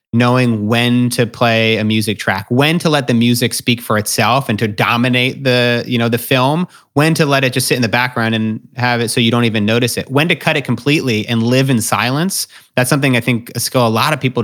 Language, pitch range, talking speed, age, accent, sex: English, 110-130 Hz, 250 wpm, 30-49, American, male